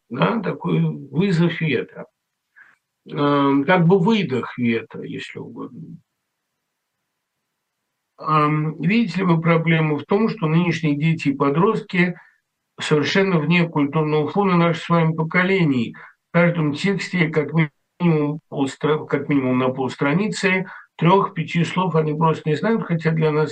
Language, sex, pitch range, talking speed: Russian, male, 150-195 Hz, 120 wpm